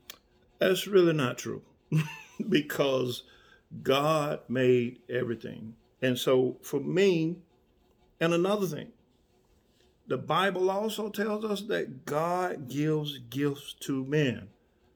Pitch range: 125-185 Hz